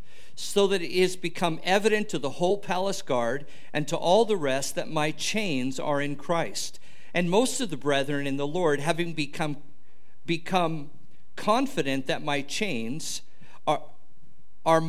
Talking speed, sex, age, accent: 155 wpm, male, 50-69, American